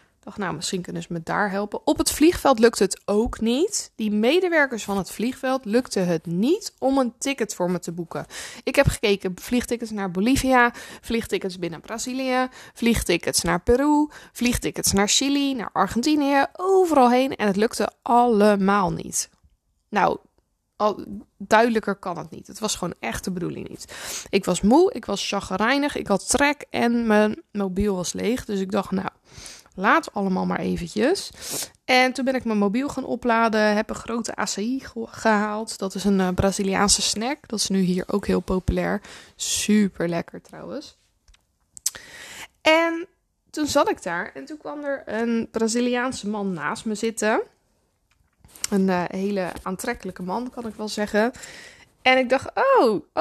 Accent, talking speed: Dutch, 165 wpm